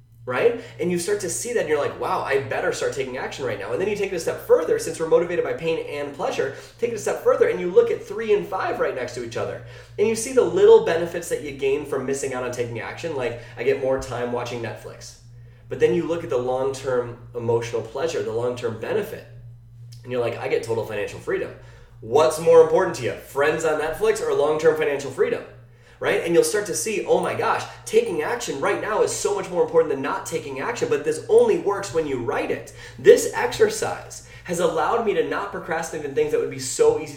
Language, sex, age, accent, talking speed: English, male, 20-39, American, 240 wpm